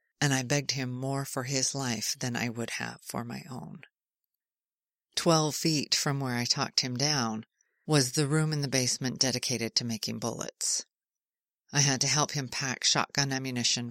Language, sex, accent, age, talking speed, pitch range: English, female, American, 40-59, 175 wpm, 125-150 Hz